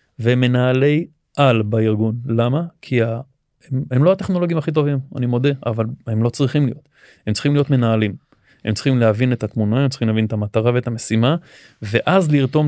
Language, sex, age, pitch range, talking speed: Hebrew, male, 20-39, 115-135 Hz, 175 wpm